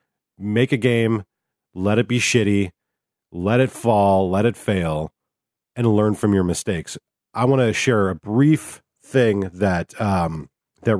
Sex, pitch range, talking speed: male, 95-115 Hz, 155 wpm